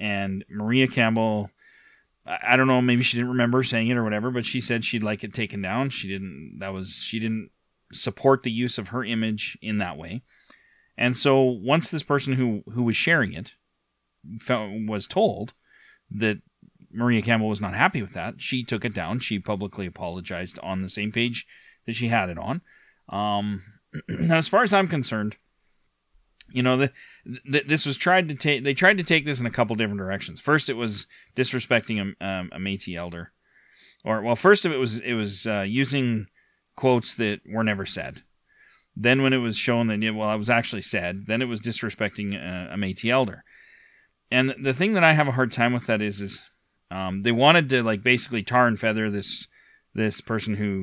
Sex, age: male, 30-49